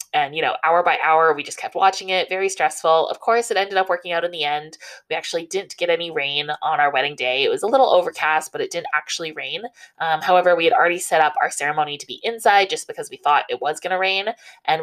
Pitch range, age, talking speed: 155-260 Hz, 20-39, 260 wpm